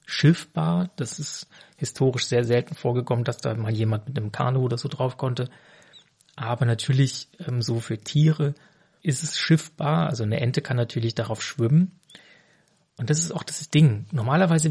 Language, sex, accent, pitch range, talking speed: German, male, German, 125-155 Hz, 165 wpm